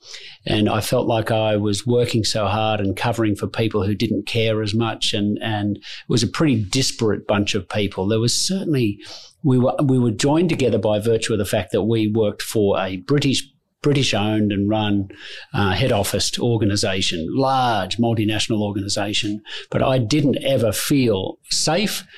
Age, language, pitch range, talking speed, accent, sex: 40-59, English, 105-130 Hz, 175 wpm, Australian, male